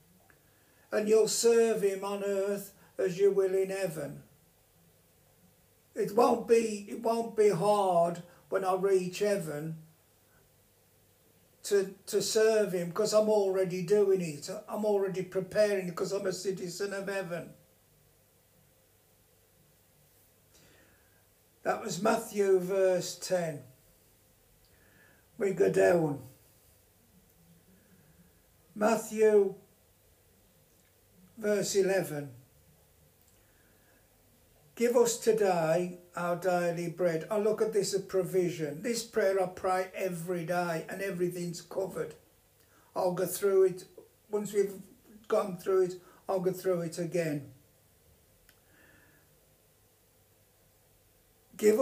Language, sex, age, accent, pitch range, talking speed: English, male, 60-79, British, 125-200 Hz, 100 wpm